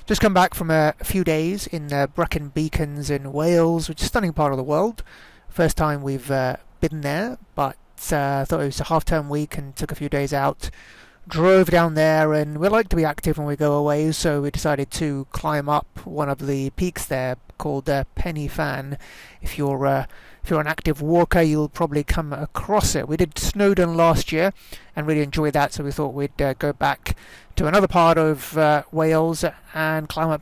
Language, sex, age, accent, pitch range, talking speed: English, male, 30-49, British, 145-175 Hz, 210 wpm